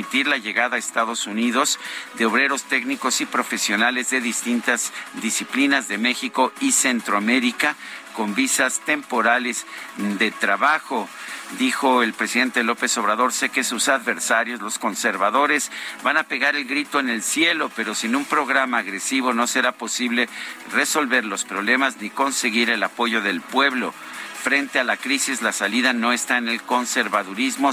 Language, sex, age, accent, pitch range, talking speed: Spanish, male, 50-69, Mexican, 115-140 Hz, 150 wpm